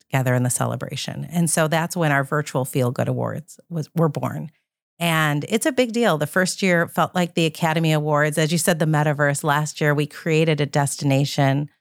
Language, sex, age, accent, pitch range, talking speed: English, female, 40-59, American, 150-185 Hz, 200 wpm